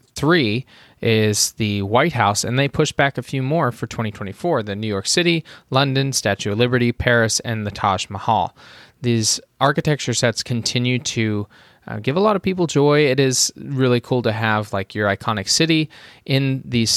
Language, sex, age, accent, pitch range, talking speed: English, male, 20-39, American, 110-140 Hz, 180 wpm